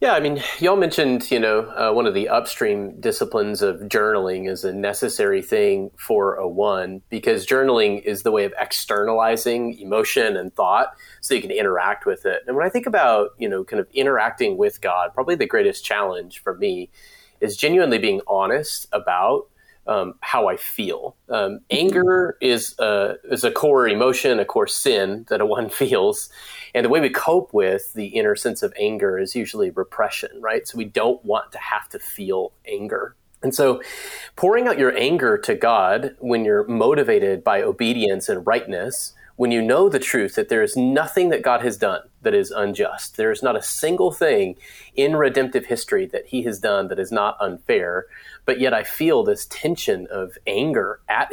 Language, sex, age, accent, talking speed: English, male, 30-49, American, 190 wpm